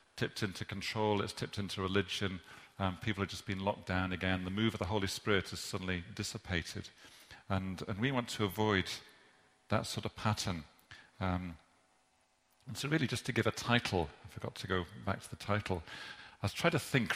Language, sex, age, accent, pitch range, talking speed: English, male, 40-59, British, 95-110 Hz, 195 wpm